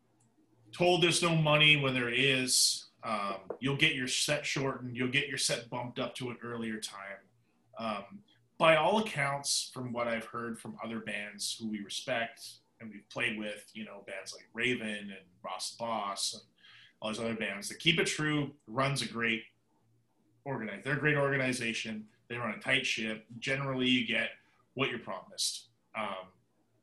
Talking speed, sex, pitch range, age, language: 175 wpm, male, 110-145 Hz, 30-49, English